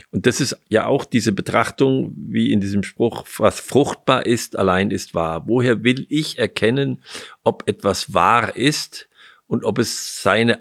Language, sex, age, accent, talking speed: German, male, 50-69, German, 165 wpm